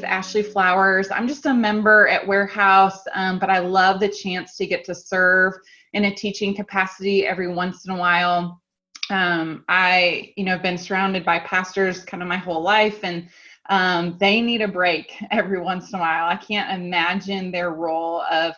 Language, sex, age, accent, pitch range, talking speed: English, female, 20-39, American, 170-195 Hz, 180 wpm